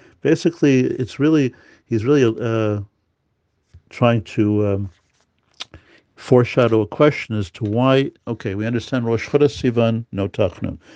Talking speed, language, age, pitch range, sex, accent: 125 wpm, English, 50-69, 105-130 Hz, male, American